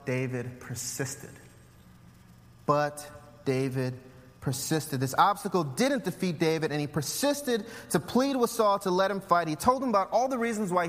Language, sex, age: English, male, 30-49